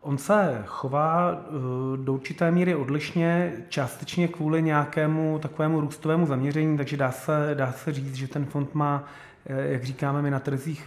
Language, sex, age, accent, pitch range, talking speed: Czech, male, 30-49, native, 135-150 Hz, 155 wpm